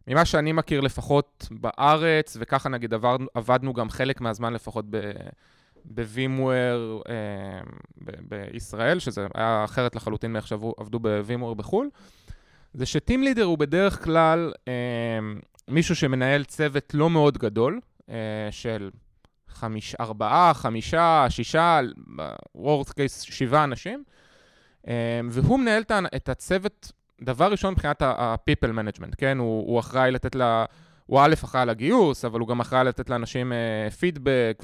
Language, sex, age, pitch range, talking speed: Hebrew, male, 20-39, 115-145 Hz, 125 wpm